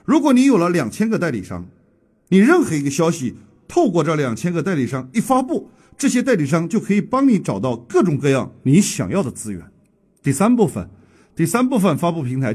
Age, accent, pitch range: 50-69, native, 140-225 Hz